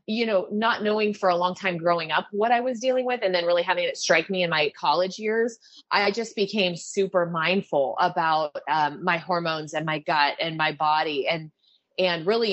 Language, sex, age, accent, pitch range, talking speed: English, female, 30-49, American, 160-190 Hz, 210 wpm